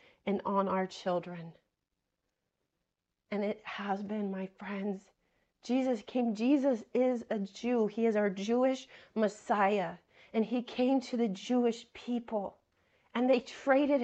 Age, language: 30-49, English